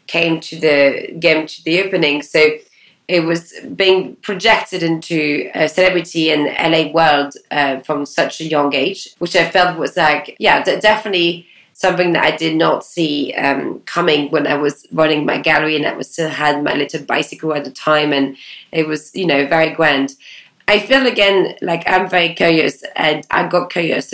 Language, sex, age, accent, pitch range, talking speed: English, female, 20-39, British, 145-175 Hz, 185 wpm